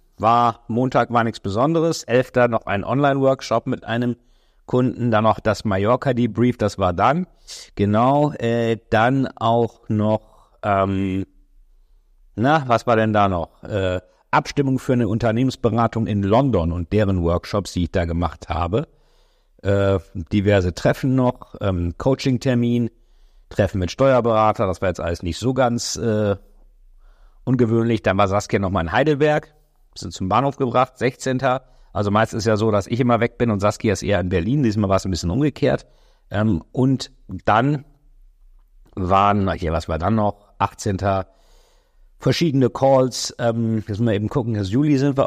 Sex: male